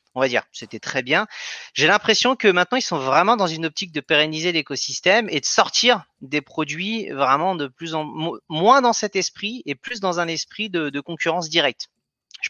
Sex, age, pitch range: male, 30-49, 145-205 Hz